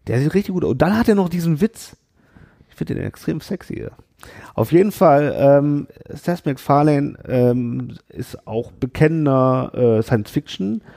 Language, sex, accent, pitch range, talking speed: German, male, German, 110-145 Hz, 165 wpm